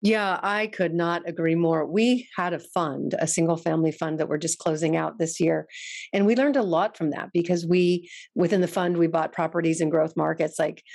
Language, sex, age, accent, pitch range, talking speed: English, female, 40-59, American, 165-210 Hz, 220 wpm